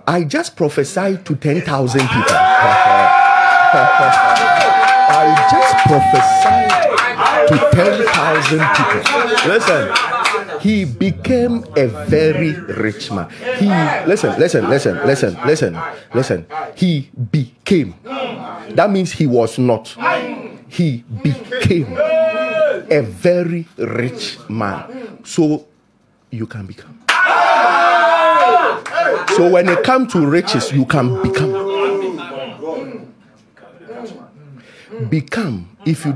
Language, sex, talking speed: English, male, 95 wpm